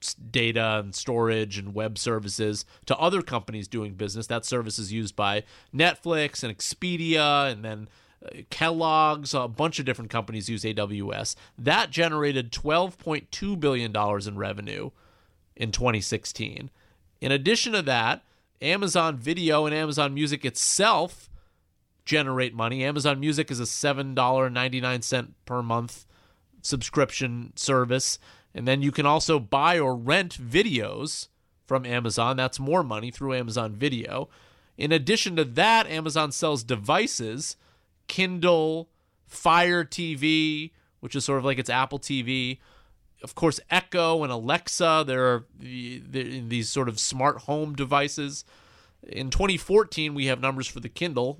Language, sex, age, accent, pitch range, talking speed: English, male, 30-49, American, 115-150 Hz, 135 wpm